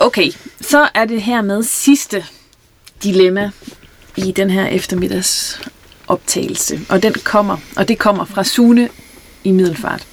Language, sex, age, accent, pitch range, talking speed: Danish, female, 30-49, native, 180-215 Hz, 130 wpm